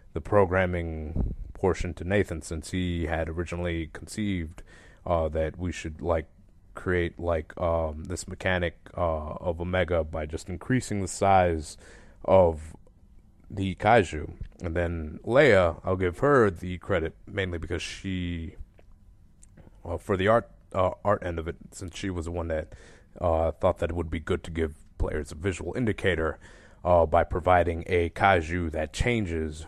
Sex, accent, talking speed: male, American, 155 wpm